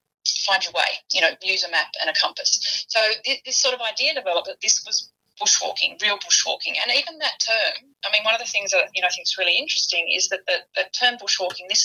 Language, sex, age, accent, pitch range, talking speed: English, female, 30-49, Australian, 180-245 Hz, 250 wpm